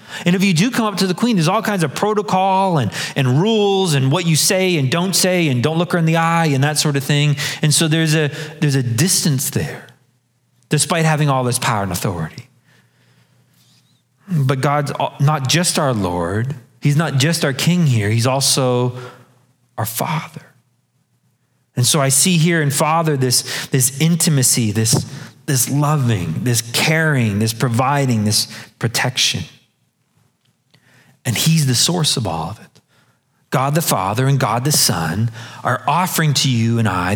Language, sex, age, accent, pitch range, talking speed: English, male, 30-49, American, 125-160 Hz, 175 wpm